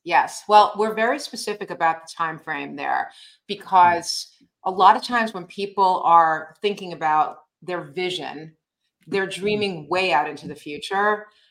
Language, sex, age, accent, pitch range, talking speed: English, female, 30-49, American, 165-210 Hz, 150 wpm